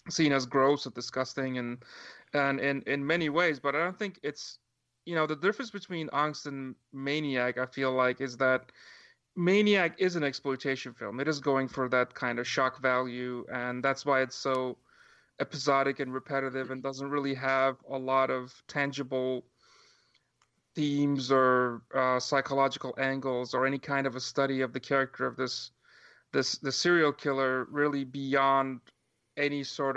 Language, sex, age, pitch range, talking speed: English, male, 30-49, 130-145 Hz, 165 wpm